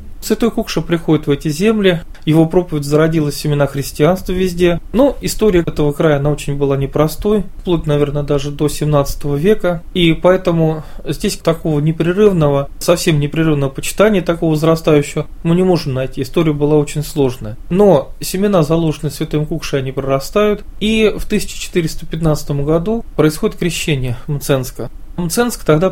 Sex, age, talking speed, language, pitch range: male, 20-39, 140 wpm, Russian, 145-180 Hz